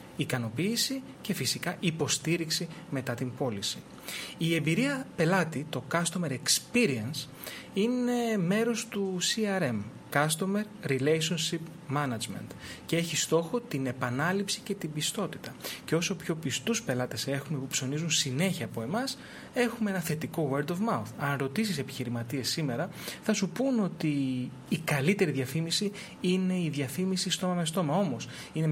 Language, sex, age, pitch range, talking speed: Greek, male, 30-49, 135-185 Hz, 135 wpm